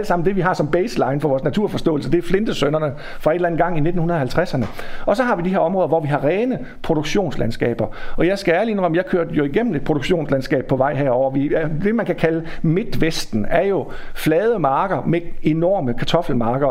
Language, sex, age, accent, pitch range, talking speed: Danish, male, 50-69, native, 155-205 Hz, 210 wpm